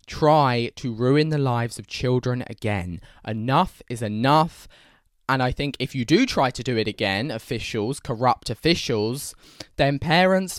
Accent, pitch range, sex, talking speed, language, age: British, 95-130 Hz, male, 155 wpm, English, 20-39